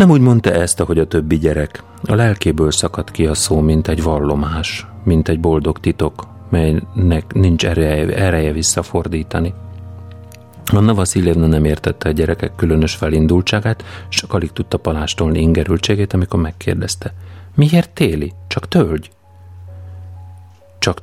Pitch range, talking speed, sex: 80-100 Hz, 130 wpm, male